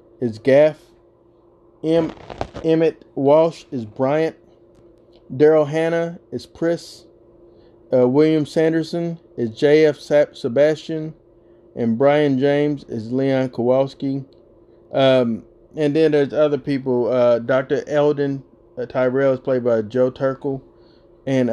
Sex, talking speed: male, 115 wpm